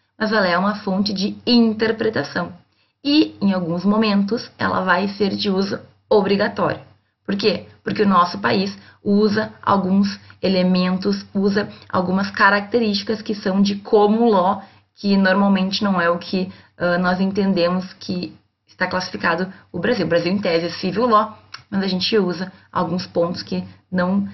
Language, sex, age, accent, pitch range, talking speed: Portuguese, female, 20-39, Brazilian, 180-210 Hz, 155 wpm